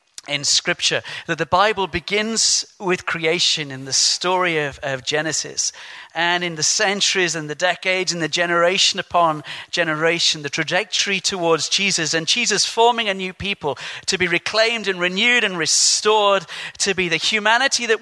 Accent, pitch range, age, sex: British, 155-195 Hz, 40-59, male